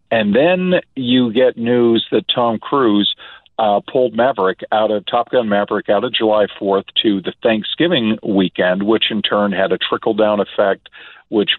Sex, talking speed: male, 165 wpm